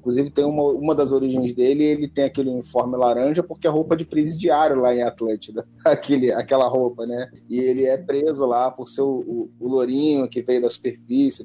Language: Portuguese